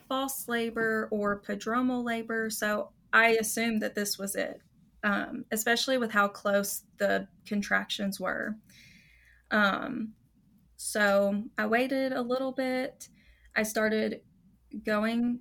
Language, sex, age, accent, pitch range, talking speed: English, female, 20-39, American, 200-230 Hz, 115 wpm